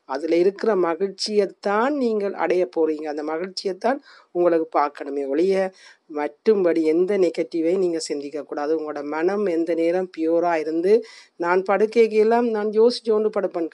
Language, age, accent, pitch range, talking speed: Tamil, 50-69, native, 165-215 Hz, 120 wpm